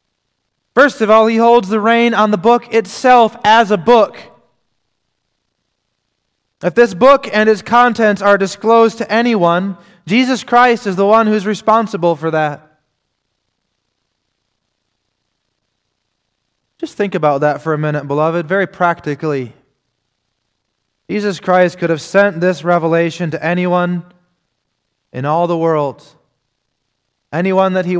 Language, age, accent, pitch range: English, 20-39, American, 130-180 Hz